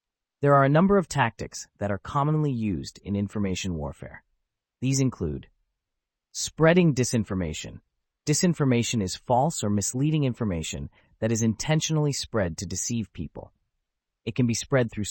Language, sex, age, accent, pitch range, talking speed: English, male, 30-49, American, 95-130 Hz, 140 wpm